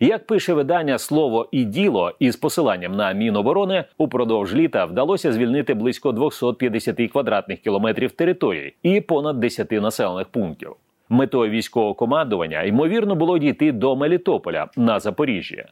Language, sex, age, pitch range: Ukrainian, male, 30-49, 115-180 Hz